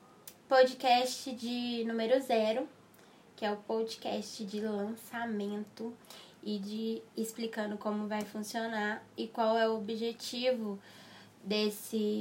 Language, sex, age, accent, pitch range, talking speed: Portuguese, female, 10-29, Brazilian, 210-235 Hz, 110 wpm